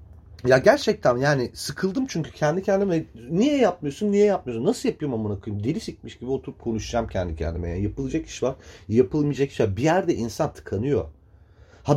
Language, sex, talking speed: Turkish, male, 165 wpm